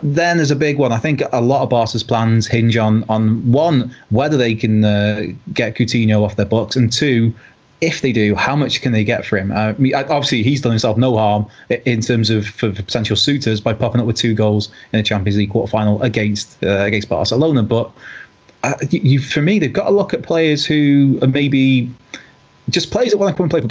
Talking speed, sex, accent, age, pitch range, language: 225 wpm, male, British, 20-39, 110-135 Hz, English